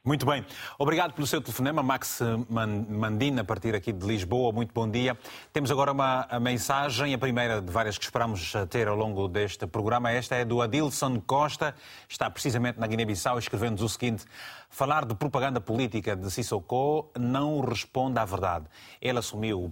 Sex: male